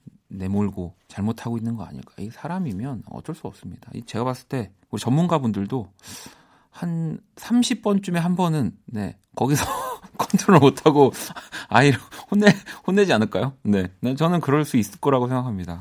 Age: 40-59